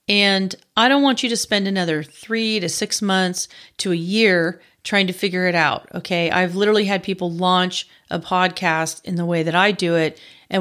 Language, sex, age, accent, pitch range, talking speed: English, female, 40-59, American, 170-210 Hz, 205 wpm